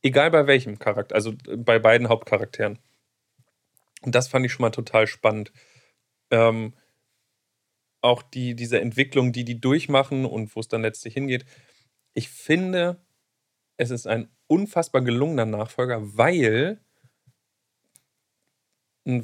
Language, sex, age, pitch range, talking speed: German, male, 40-59, 115-145 Hz, 120 wpm